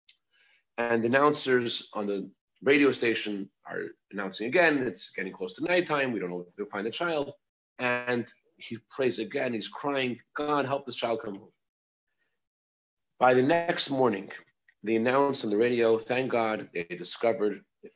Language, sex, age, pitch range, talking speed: English, male, 40-59, 115-150 Hz, 165 wpm